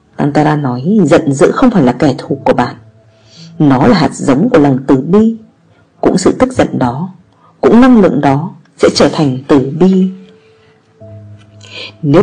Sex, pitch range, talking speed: female, 135-215 Hz, 165 wpm